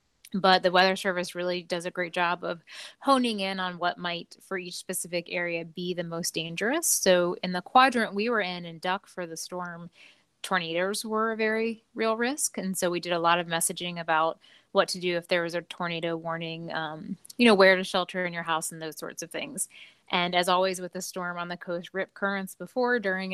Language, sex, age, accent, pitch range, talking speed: English, female, 20-39, American, 175-200 Hz, 220 wpm